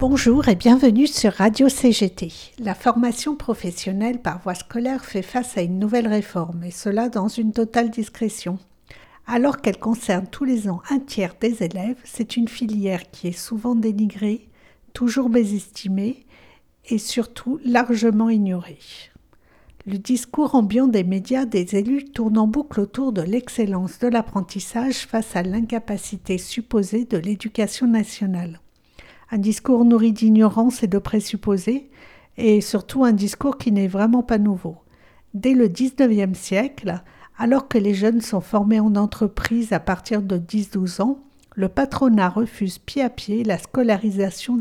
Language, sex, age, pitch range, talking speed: French, female, 60-79, 200-245 Hz, 150 wpm